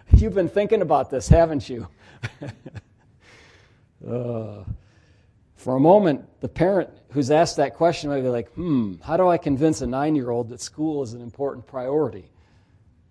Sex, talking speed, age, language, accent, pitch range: male, 150 wpm, 40-59, English, American, 105-135 Hz